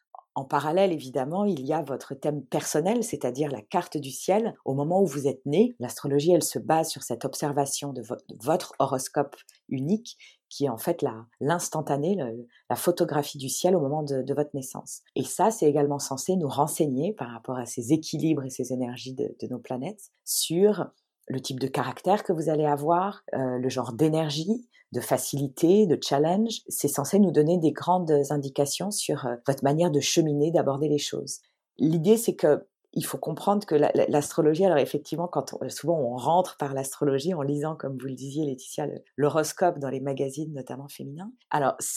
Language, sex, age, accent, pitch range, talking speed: French, female, 40-59, French, 135-170 Hz, 185 wpm